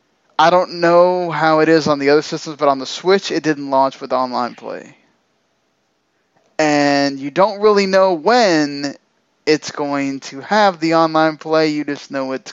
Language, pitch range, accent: English, 130-160 Hz, American